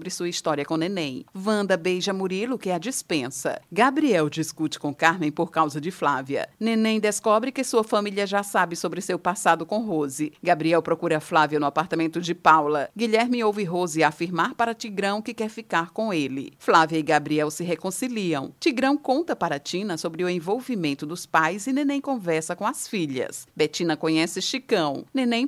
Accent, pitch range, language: Brazilian, 160-225 Hz, Portuguese